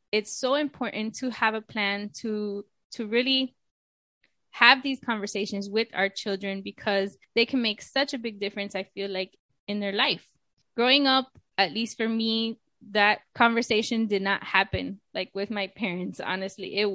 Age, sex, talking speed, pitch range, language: 10-29, female, 165 wpm, 200-235 Hz, English